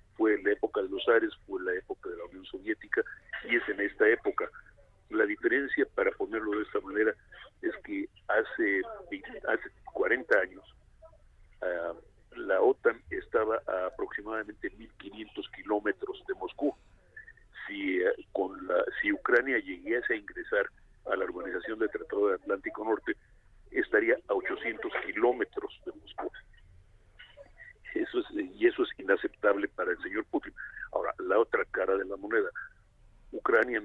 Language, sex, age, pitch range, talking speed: Spanish, male, 50-69, 350-440 Hz, 145 wpm